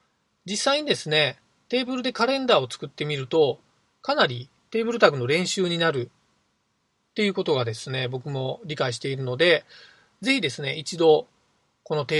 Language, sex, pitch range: Japanese, male, 130-205 Hz